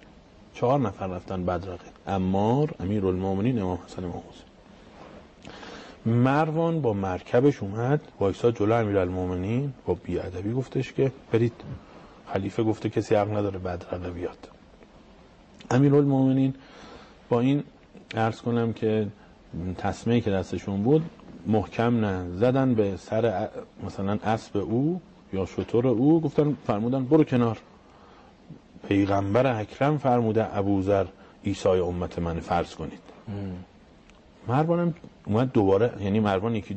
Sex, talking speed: male, 115 wpm